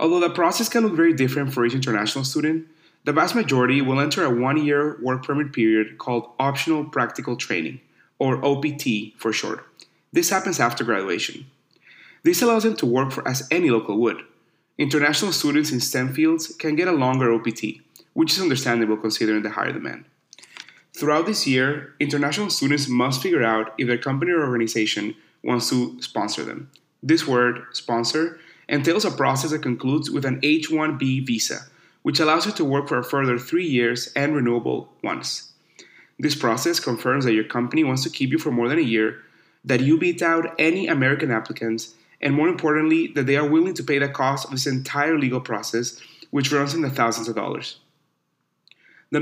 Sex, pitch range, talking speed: male, 125-155 Hz, 180 wpm